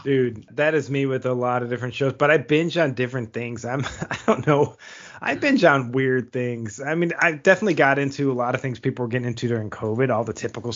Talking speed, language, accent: 250 wpm, English, American